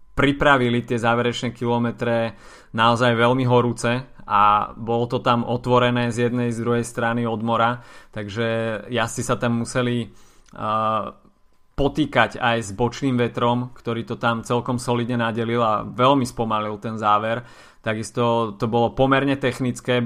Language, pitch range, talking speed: Slovak, 115-125 Hz, 140 wpm